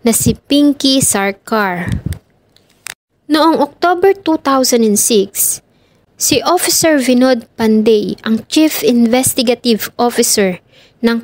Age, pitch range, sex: 20-39, 215-255 Hz, female